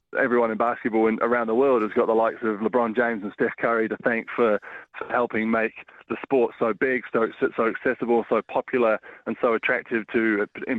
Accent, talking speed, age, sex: British, 200 wpm, 20-39, male